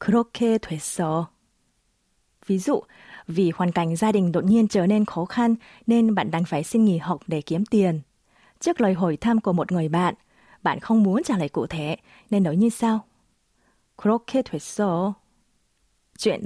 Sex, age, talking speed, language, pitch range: female, 20-39, 155 wpm, Vietnamese, 170-235 Hz